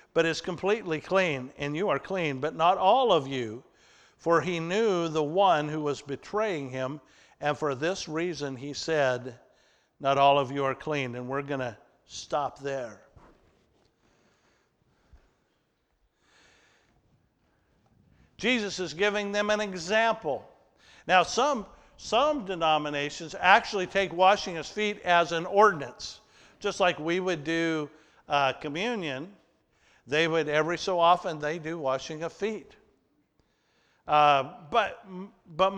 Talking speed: 130 wpm